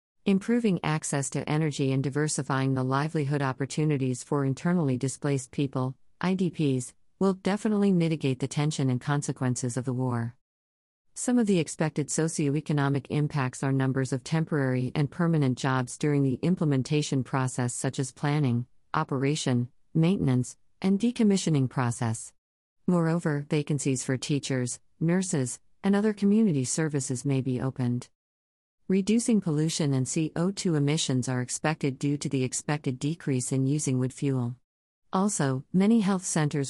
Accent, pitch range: American, 130-160 Hz